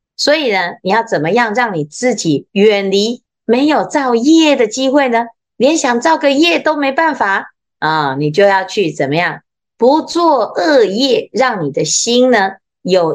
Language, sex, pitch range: Chinese, female, 190-280 Hz